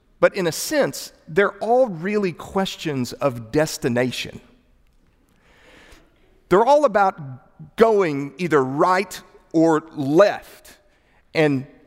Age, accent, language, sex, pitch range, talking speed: 40-59, American, English, male, 155-205 Hz, 95 wpm